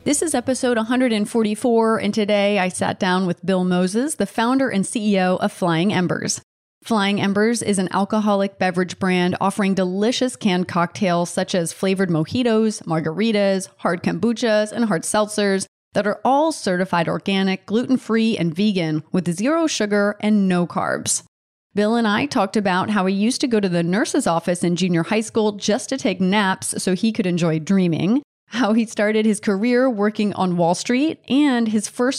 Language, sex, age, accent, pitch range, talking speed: English, female, 30-49, American, 185-230 Hz, 175 wpm